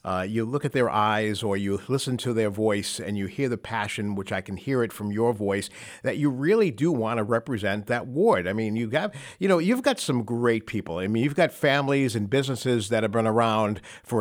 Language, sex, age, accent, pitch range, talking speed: English, male, 50-69, American, 110-145 Hz, 240 wpm